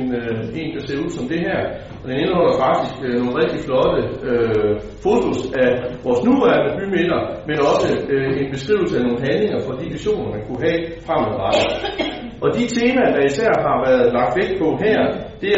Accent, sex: native, male